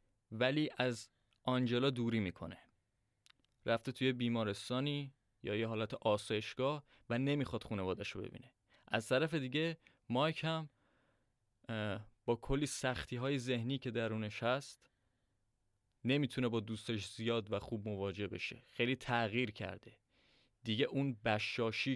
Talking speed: 120 wpm